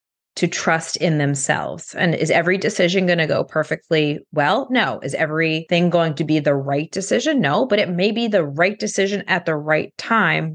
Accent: American